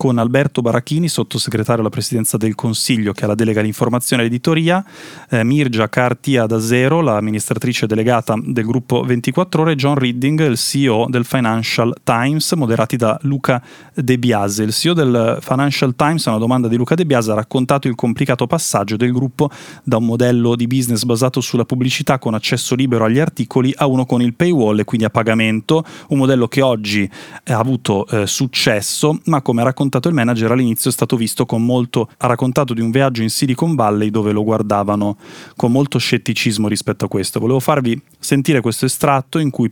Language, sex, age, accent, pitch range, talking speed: Italian, male, 30-49, native, 115-140 Hz, 190 wpm